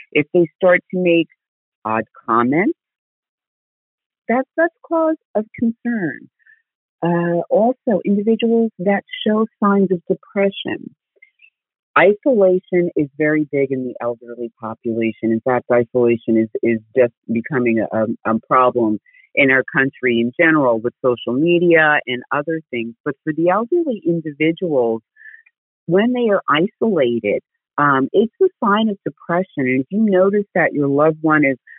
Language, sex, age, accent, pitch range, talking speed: English, female, 40-59, American, 140-205 Hz, 140 wpm